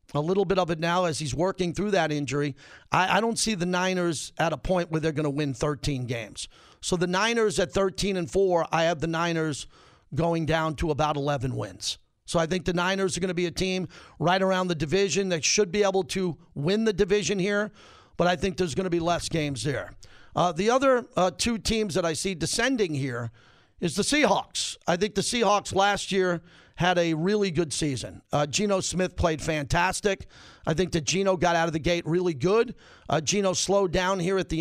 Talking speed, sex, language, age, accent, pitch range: 220 wpm, male, English, 50-69, American, 165-195 Hz